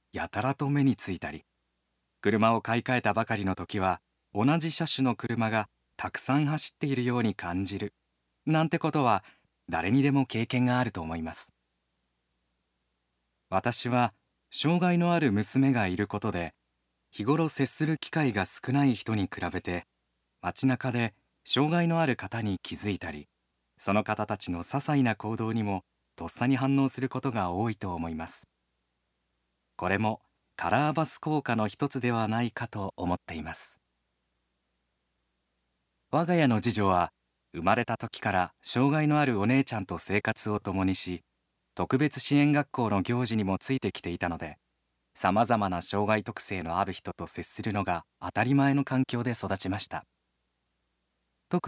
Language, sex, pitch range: Japanese, male, 75-125 Hz